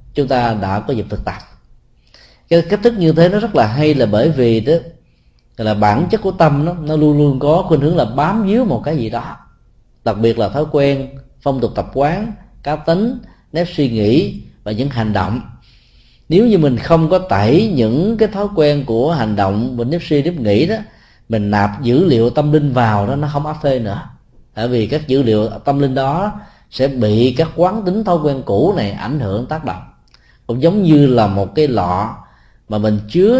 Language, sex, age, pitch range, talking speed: Vietnamese, male, 20-39, 110-160 Hz, 215 wpm